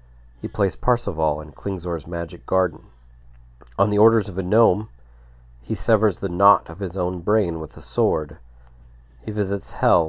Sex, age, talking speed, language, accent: male, 40-59, 160 wpm, English, American